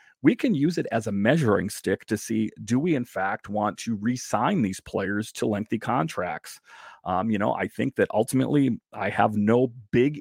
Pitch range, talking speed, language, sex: 100-125 Hz, 195 wpm, English, male